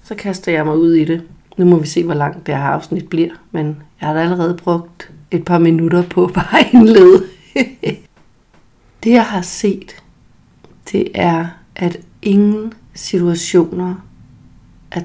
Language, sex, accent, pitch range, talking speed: Danish, female, native, 165-195 Hz, 150 wpm